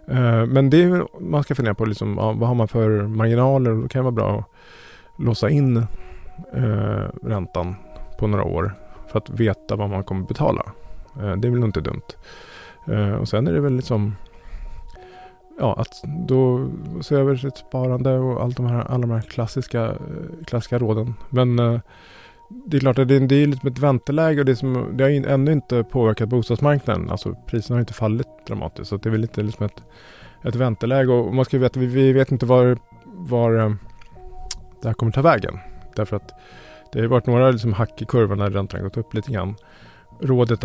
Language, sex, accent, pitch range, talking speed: Swedish, male, Norwegian, 105-130 Hz, 200 wpm